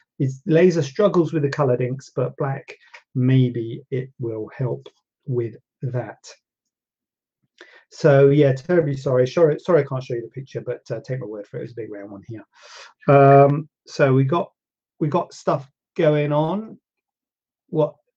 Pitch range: 130-155 Hz